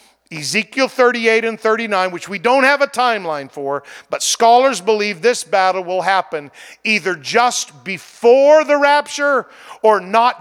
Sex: male